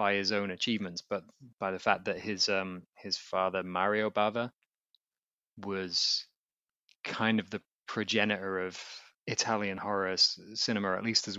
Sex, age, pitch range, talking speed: male, 20-39, 95-115 Hz, 150 wpm